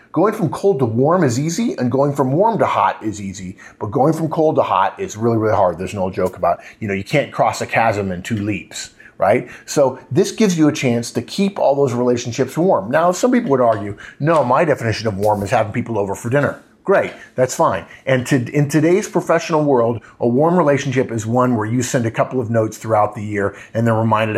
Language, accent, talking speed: English, American, 235 wpm